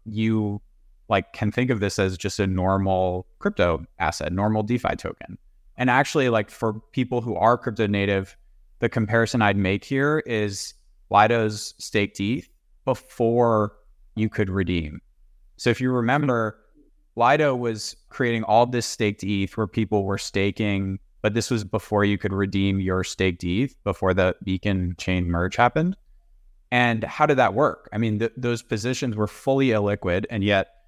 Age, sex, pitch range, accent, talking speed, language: 20-39, male, 95-115 Hz, American, 160 wpm, English